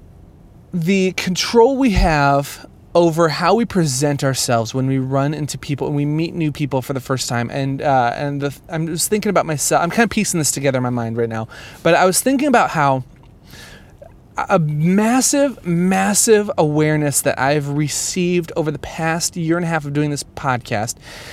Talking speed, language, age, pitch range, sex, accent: 190 wpm, English, 30-49, 135-185 Hz, male, American